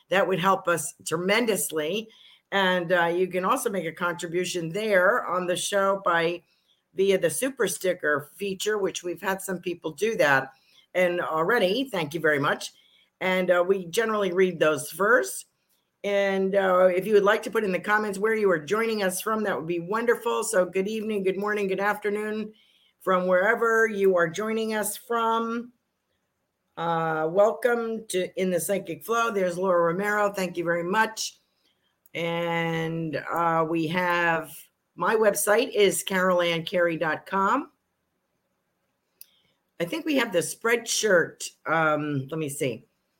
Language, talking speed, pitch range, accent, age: English, 155 wpm, 165-210 Hz, American, 50-69